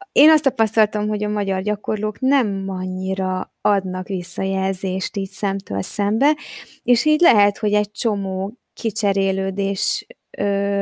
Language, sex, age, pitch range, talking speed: Hungarian, female, 20-39, 200-240 Hz, 120 wpm